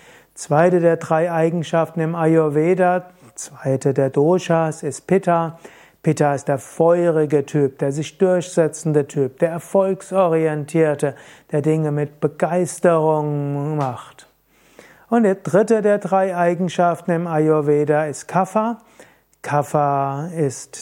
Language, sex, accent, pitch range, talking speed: German, male, German, 150-180 Hz, 110 wpm